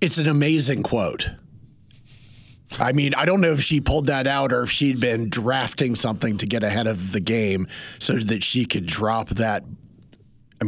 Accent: American